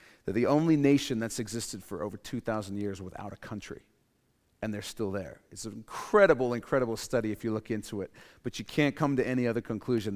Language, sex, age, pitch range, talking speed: English, male, 40-59, 115-175 Hz, 205 wpm